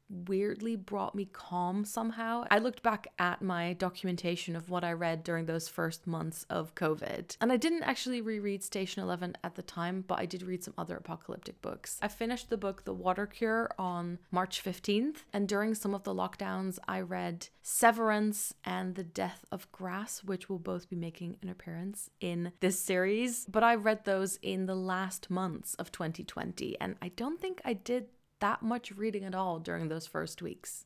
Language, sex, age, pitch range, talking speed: English, female, 20-39, 175-210 Hz, 190 wpm